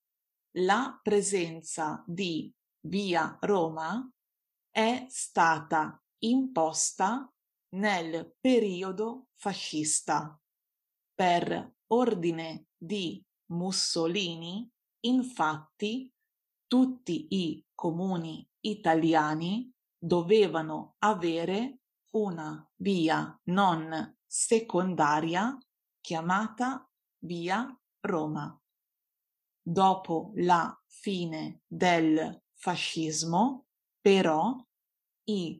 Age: 30-49